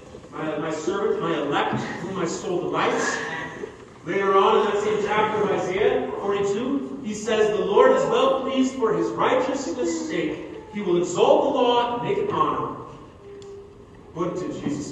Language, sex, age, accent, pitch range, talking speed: English, male, 40-59, American, 180-270 Hz, 170 wpm